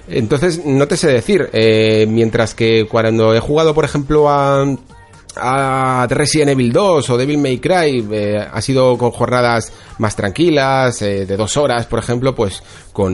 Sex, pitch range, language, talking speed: male, 100-125 Hz, Spanish, 170 wpm